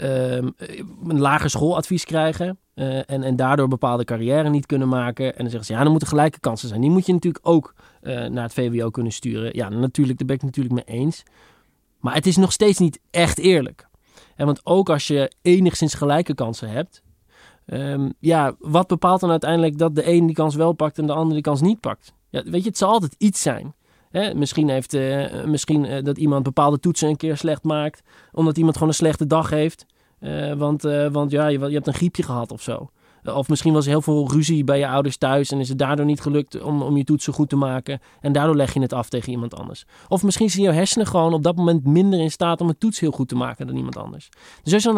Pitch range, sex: 135-170 Hz, male